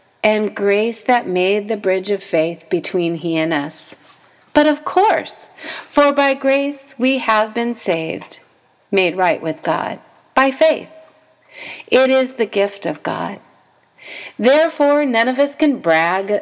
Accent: American